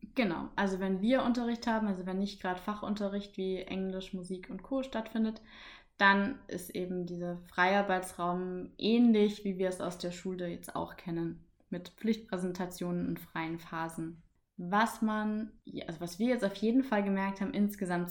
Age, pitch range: 20-39, 180-210 Hz